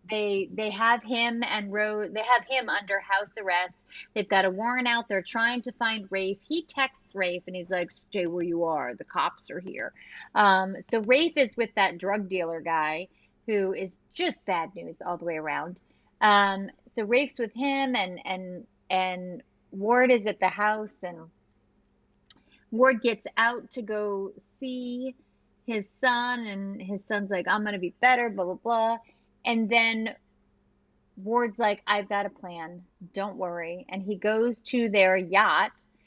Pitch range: 190-235 Hz